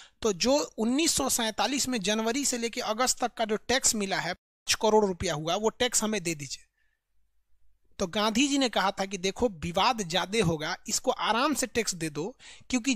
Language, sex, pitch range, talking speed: Hindi, male, 210-275 Hz, 190 wpm